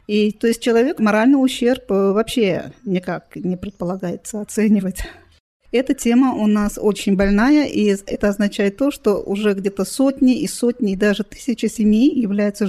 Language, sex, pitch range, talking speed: Russian, female, 195-240 Hz, 150 wpm